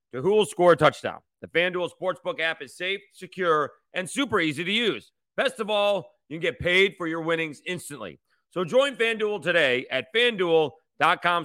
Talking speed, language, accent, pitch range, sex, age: 180 wpm, English, American, 145-190 Hz, male, 40-59